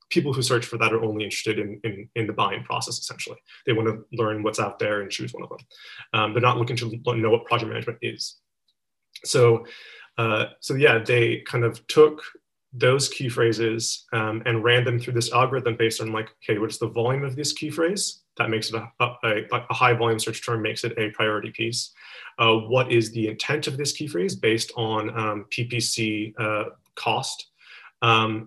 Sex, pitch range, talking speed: male, 110-120 Hz, 200 wpm